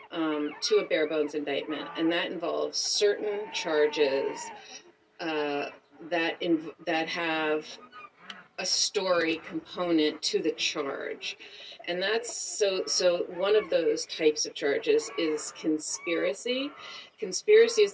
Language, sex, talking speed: English, female, 115 wpm